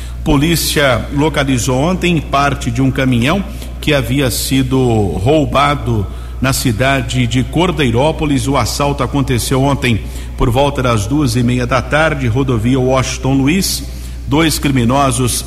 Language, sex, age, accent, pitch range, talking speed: Portuguese, male, 50-69, Brazilian, 120-140 Hz, 125 wpm